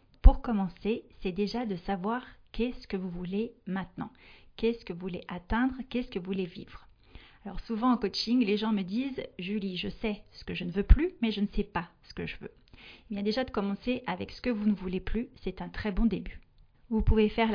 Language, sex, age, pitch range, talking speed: French, female, 40-59, 190-230 Hz, 230 wpm